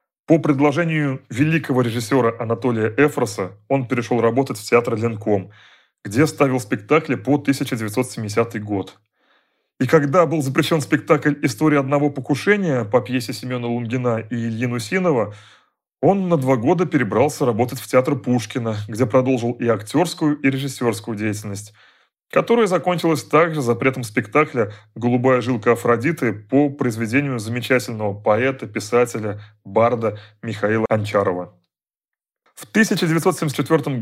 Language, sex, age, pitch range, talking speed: Russian, male, 30-49, 115-150 Hz, 120 wpm